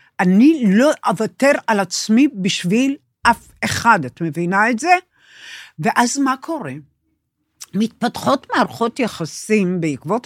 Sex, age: female, 60-79